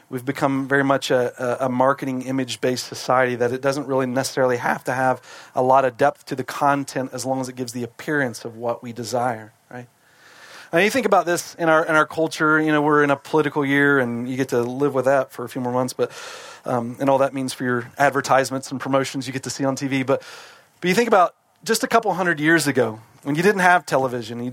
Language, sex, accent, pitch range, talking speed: English, male, American, 130-155 Hz, 240 wpm